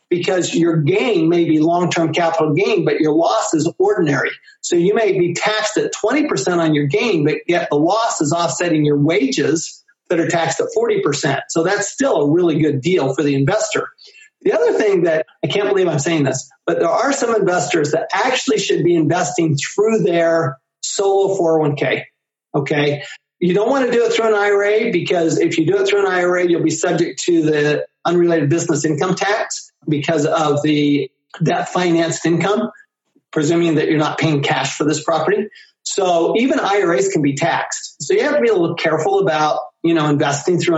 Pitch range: 155-205 Hz